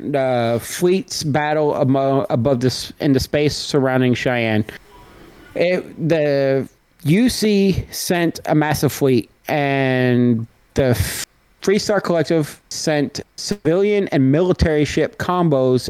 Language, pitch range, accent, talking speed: English, 130-165 Hz, American, 115 wpm